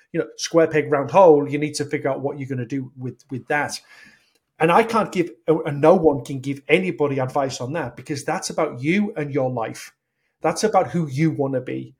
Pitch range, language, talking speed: 140-160 Hz, English, 230 wpm